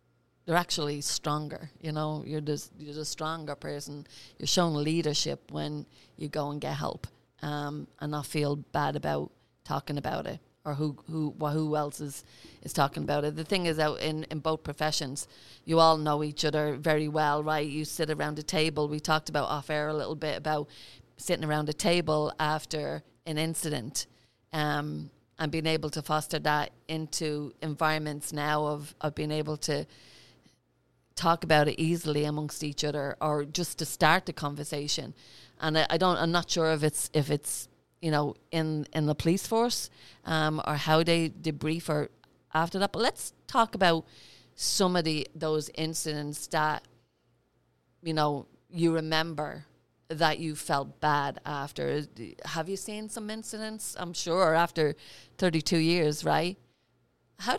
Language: English